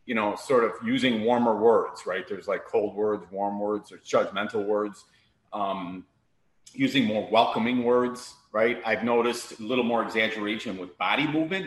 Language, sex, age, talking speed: English, male, 30-49, 165 wpm